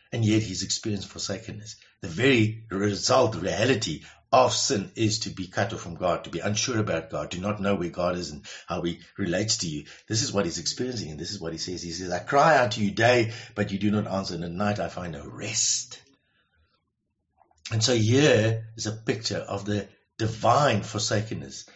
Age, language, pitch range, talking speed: 60-79, English, 100-120 Hz, 210 wpm